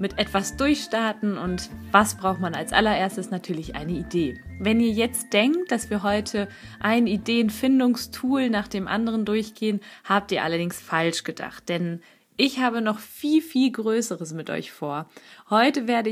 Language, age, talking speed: German, 20-39, 155 wpm